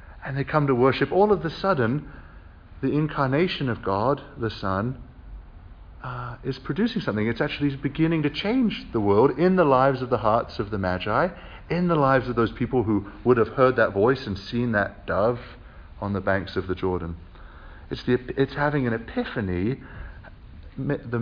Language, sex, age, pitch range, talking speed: English, male, 50-69, 90-145 Hz, 180 wpm